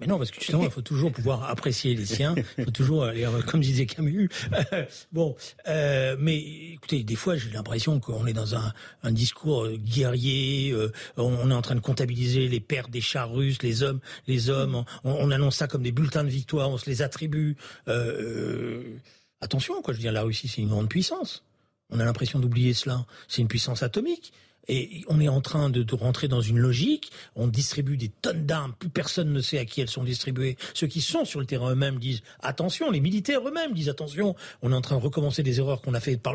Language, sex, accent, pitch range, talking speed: French, male, French, 125-155 Hz, 225 wpm